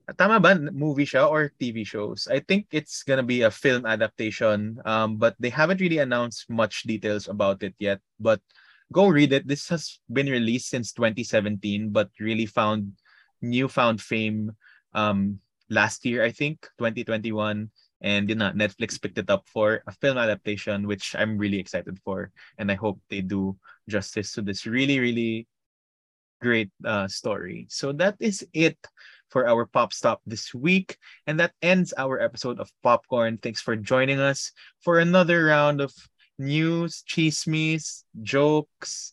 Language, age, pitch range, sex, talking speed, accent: English, 20-39, 110-150 Hz, male, 160 wpm, Filipino